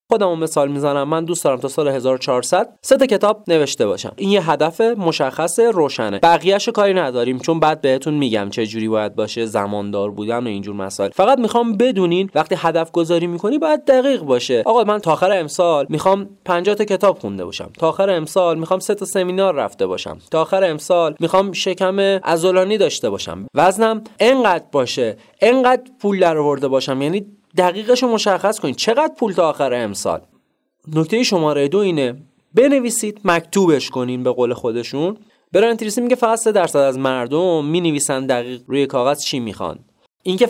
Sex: male